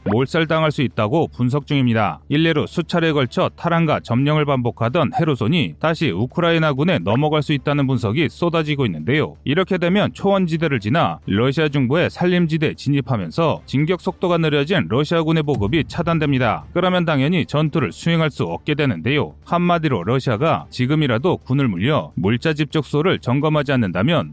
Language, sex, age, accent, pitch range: Korean, male, 30-49, native, 125-165 Hz